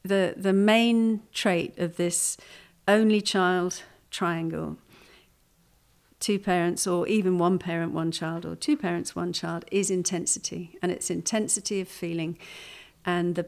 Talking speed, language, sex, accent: 135 wpm, English, female, British